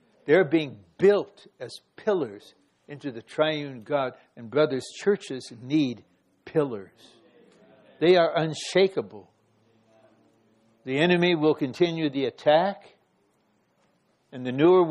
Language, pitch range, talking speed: English, 130-175 Hz, 105 wpm